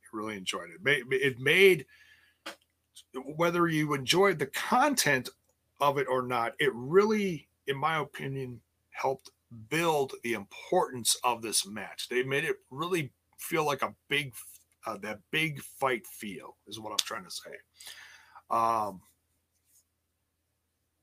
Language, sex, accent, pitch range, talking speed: English, male, American, 95-155 Hz, 130 wpm